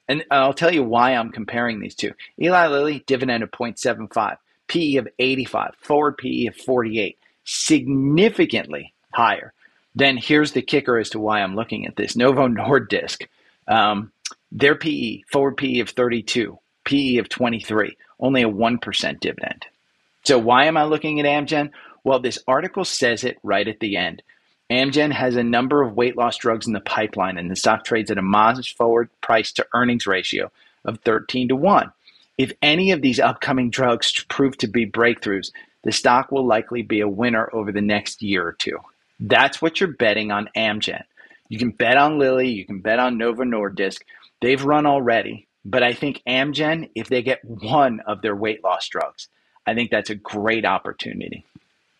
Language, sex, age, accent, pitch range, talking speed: English, male, 30-49, American, 110-135 Hz, 180 wpm